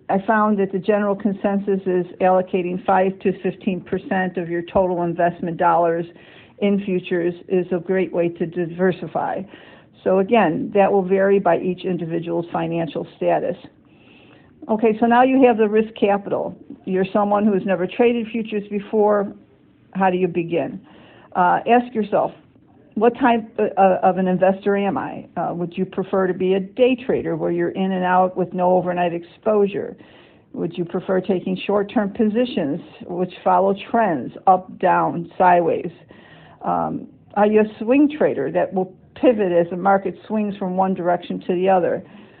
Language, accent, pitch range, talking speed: English, American, 175-200 Hz, 160 wpm